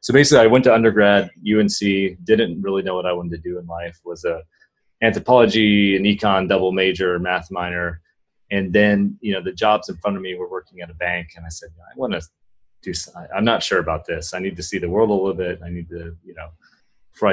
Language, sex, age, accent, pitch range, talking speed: English, male, 30-49, American, 85-95 Hz, 240 wpm